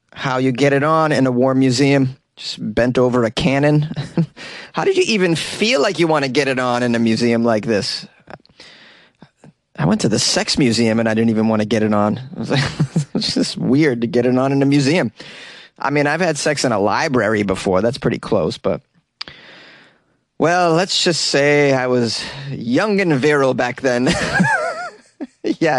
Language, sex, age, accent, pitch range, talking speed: English, male, 30-49, American, 125-175 Hz, 190 wpm